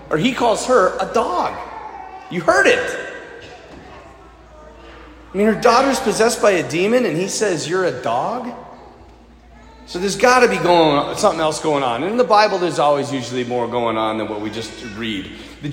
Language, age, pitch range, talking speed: English, 30-49, 150-250 Hz, 190 wpm